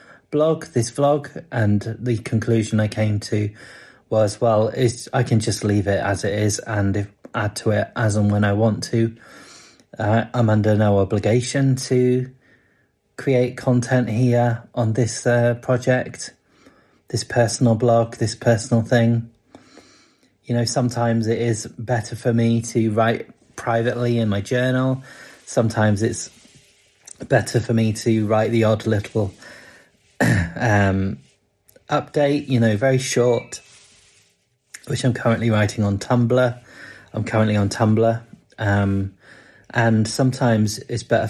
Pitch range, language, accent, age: 105-120 Hz, English, British, 30-49